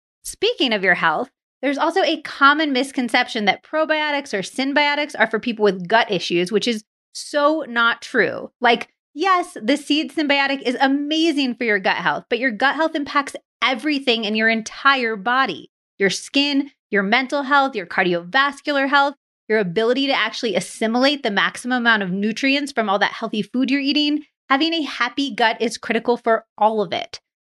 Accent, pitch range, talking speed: American, 205-275 Hz, 175 wpm